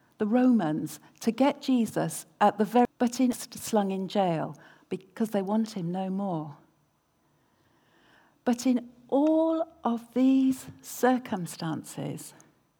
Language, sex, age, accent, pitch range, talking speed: English, female, 60-79, British, 180-250 Hz, 115 wpm